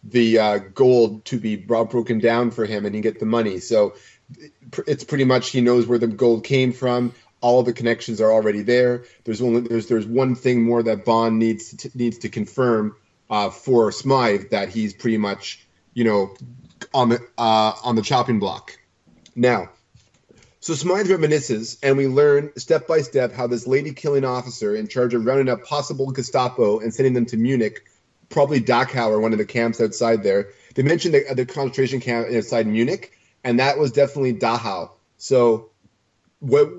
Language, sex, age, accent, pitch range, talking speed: English, male, 30-49, American, 115-135 Hz, 190 wpm